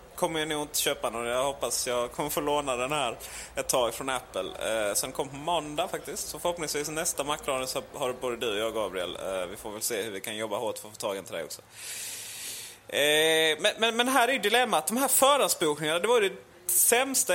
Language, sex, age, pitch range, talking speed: Swedish, male, 20-39, 130-190 Hz, 250 wpm